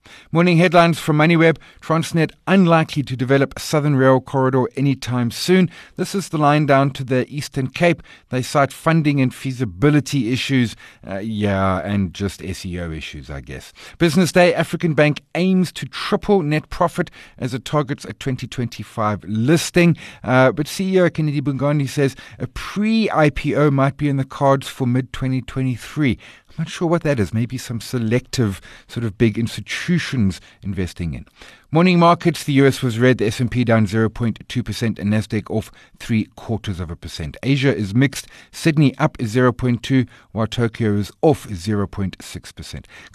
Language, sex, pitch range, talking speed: English, male, 105-150 Hz, 155 wpm